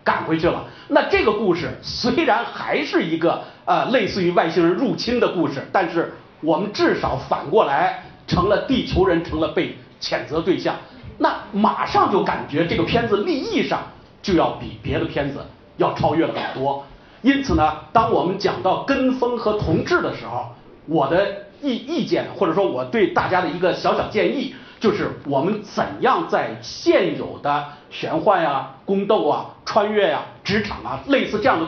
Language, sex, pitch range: Chinese, male, 155-220 Hz